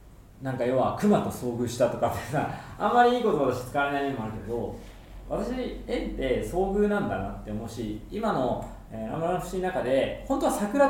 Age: 20-39